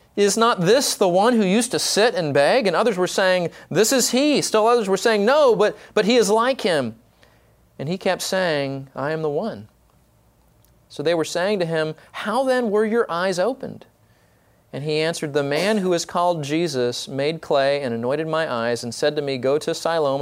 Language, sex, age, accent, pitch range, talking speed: English, male, 30-49, American, 125-175 Hz, 210 wpm